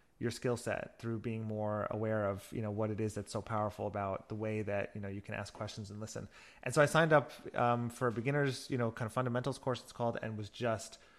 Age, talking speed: 30-49, 255 wpm